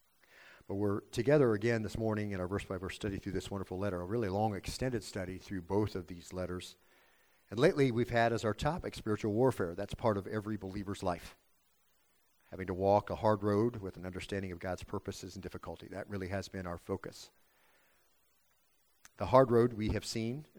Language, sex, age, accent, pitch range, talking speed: English, male, 50-69, American, 95-110 Hz, 190 wpm